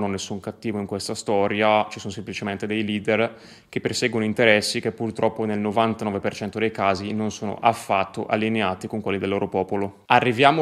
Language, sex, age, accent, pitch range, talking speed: Italian, male, 20-39, native, 110-130 Hz, 165 wpm